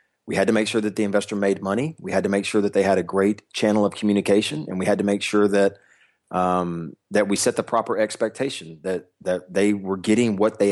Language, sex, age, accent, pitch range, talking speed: English, male, 30-49, American, 95-110 Hz, 245 wpm